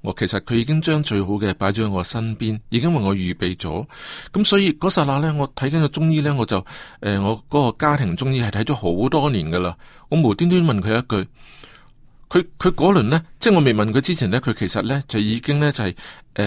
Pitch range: 105-150 Hz